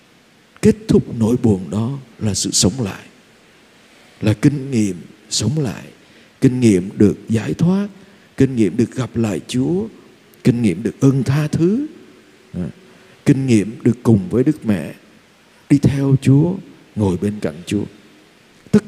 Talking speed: 145 wpm